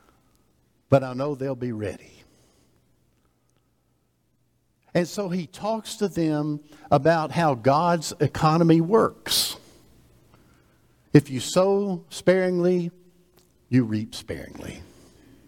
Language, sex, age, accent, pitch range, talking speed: English, male, 60-79, American, 135-185 Hz, 95 wpm